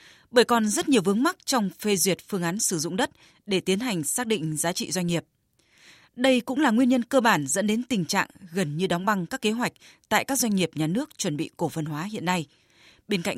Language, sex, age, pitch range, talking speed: Vietnamese, female, 20-39, 170-235 Hz, 250 wpm